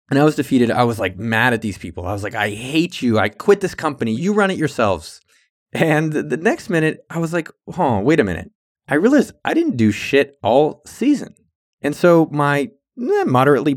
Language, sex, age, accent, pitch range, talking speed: English, male, 20-39, American, 115-155 Hz, 220 wpm